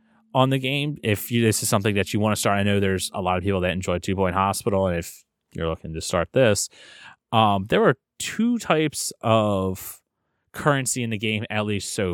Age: 30-49